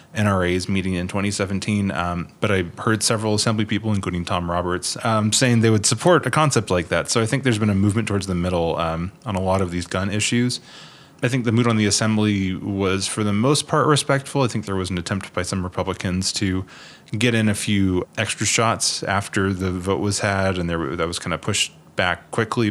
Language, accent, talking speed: English, American, 220 wpm